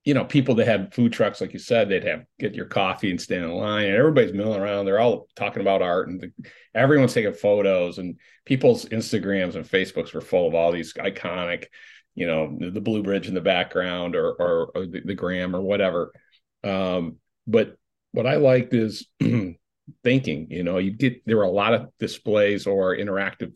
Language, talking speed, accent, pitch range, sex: English, 200 wpm, American, 95-120 Hz, male